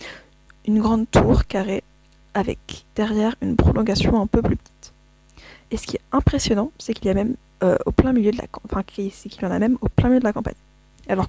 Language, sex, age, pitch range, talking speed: French, female, 20-39, 200-240 Hz, 160 wpm